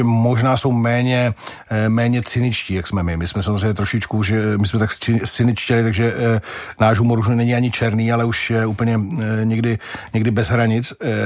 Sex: male